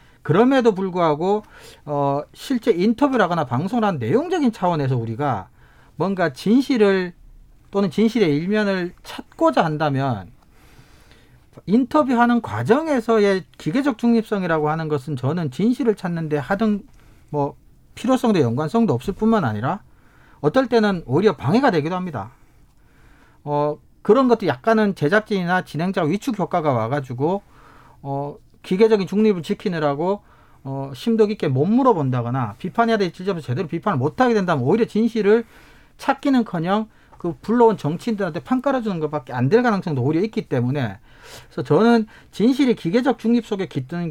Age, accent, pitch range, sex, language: 40-59, native, 145-225 Hz, male, Korean